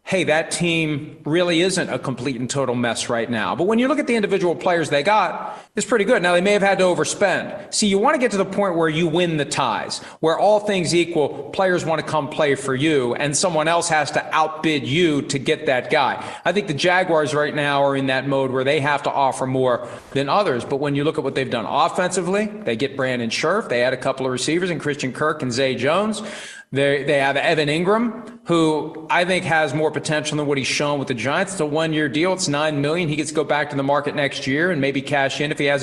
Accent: American